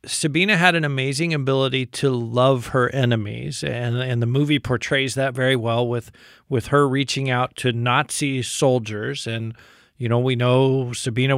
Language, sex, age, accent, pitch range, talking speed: English, male, 40-59, American, 125-145 Hz, 165 wpm